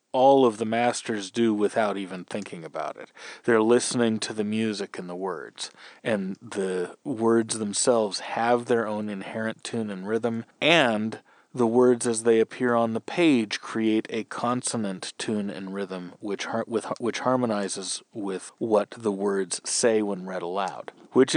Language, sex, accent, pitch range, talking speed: English, male, American, 105-130 Hz, 165 wpm